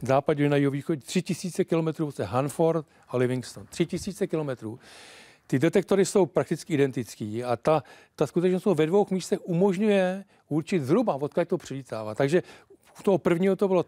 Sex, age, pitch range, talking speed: male, 40-59, 140-185 Hz, 155 wpm